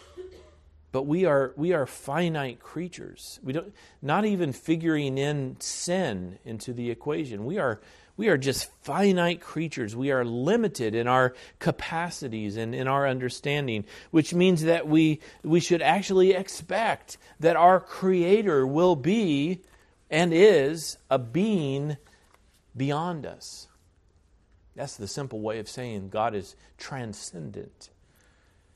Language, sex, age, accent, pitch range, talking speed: English, male, 40-59, American, 90-145 Hz, 130 wpm